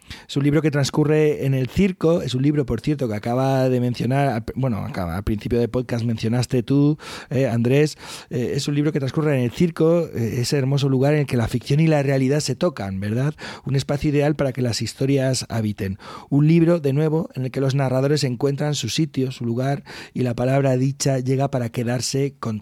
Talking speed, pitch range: 215 wpm, 120-145 Hz